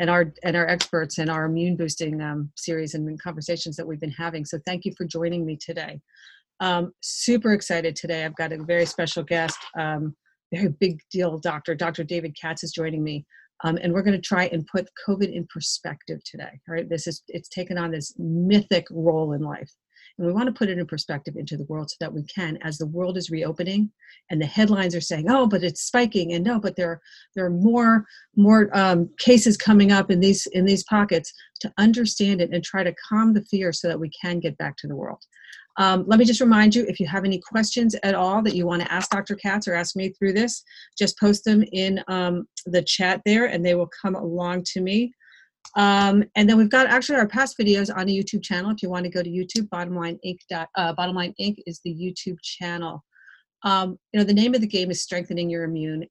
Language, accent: English, American